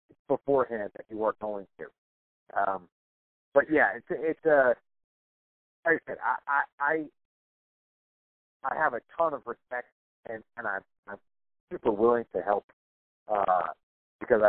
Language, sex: English, male